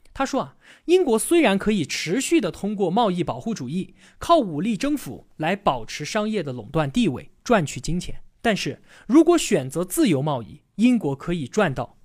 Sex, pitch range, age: male, 155-245 Hz, 20-39